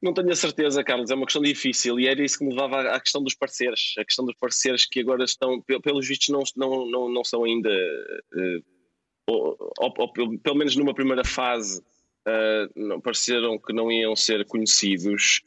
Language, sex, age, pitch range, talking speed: Portuguese, male, 20-39, 115-155 Hz, 180 wpm